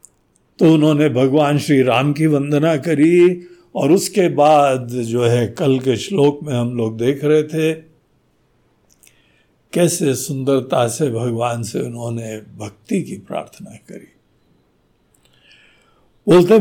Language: Hindi